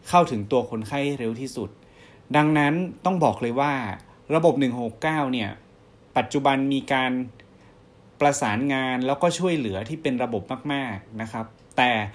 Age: 30-49